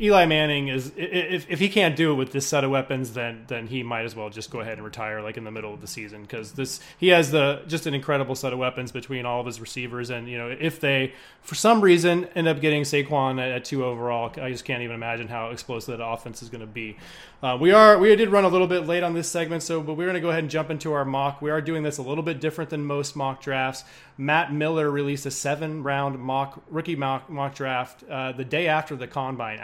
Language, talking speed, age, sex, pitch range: English, 260 wpm, 20-39, male, 125-155 Hz